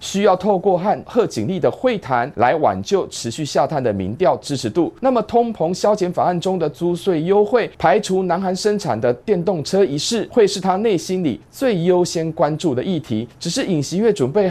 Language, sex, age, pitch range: Chinese, male, 30-49, 145-210 Hz